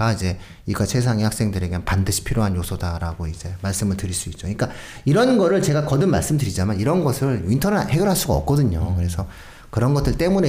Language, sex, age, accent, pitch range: Korean, male, 40-59, native, 95-145 Hz